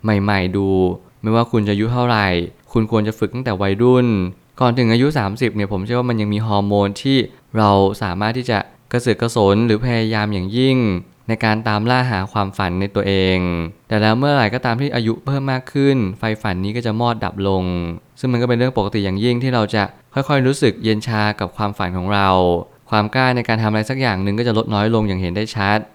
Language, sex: Thai, male